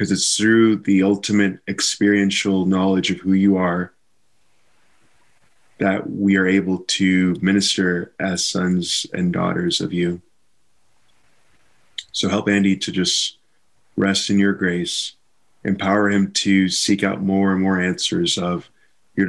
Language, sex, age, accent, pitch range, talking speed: English, male, 20-39, American, 90-100 Hz, 135 wpm